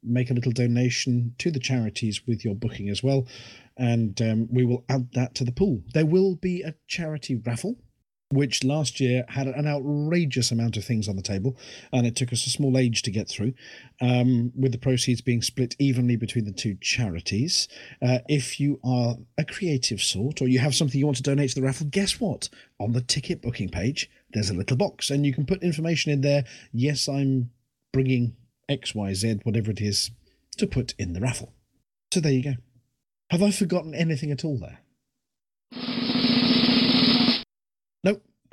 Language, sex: English, male